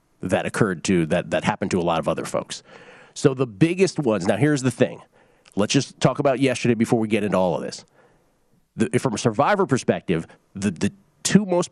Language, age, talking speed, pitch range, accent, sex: English, 40-59, 210 wpm, 115-150 Hz, American, male